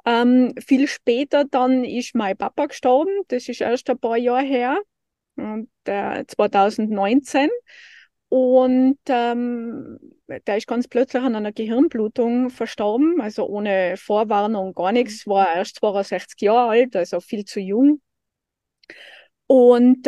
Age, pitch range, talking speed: 20-39, 210-255 Hz, 125 wpm